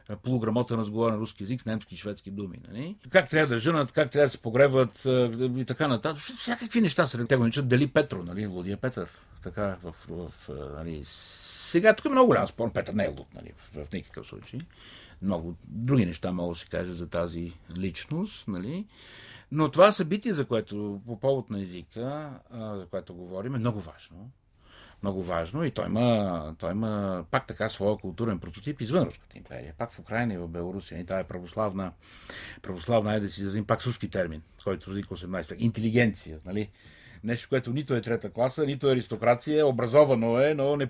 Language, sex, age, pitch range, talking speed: Bulgarian, male, 60-79, 95-130 Hz, 190 wpm